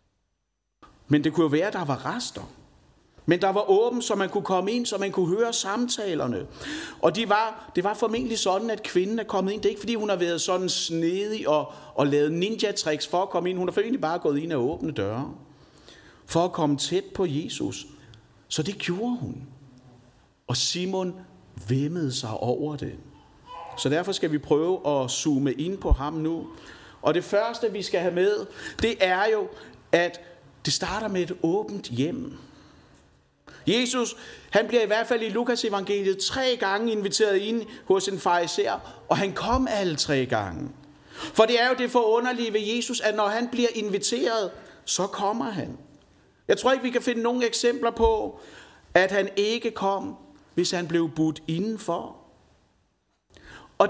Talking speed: 180 wpm